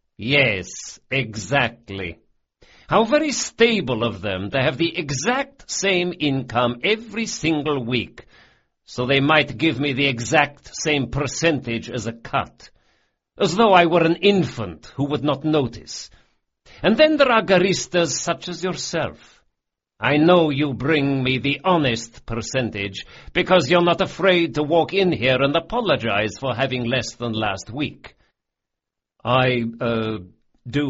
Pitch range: 110-160 Hz